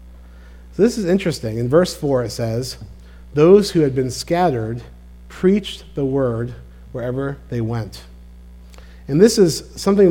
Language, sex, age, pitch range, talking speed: English, male, 40-59, 105-170 Hz, 135 wpm